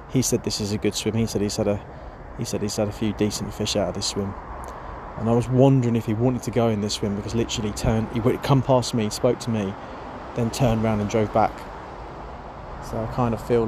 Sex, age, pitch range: male, 20-39, 110-140 Hz